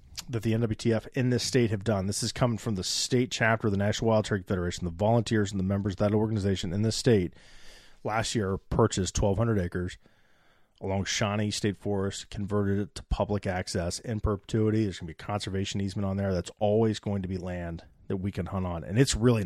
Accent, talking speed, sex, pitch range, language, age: American, 215 wpm, male, 100-115 Hz, English, 30-49